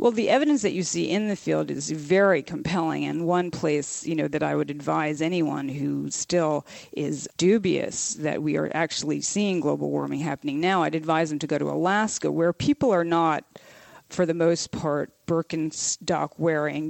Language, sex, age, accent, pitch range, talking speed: English, female, 40-59, American, 150-175 Hz, 180 wpm